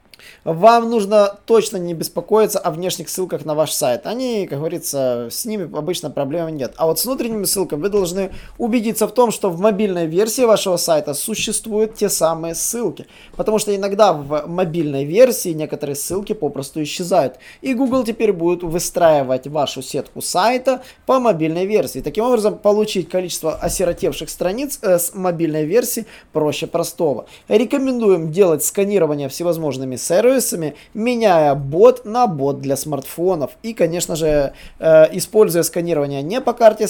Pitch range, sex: 150-210 Hz, male